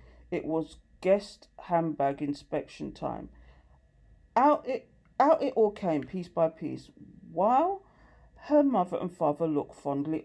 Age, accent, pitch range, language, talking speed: 40-59, British, 145-205 Hz, English, 130 wpm